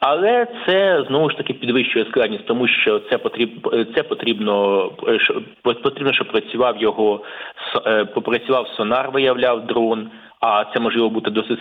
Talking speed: 135 wpm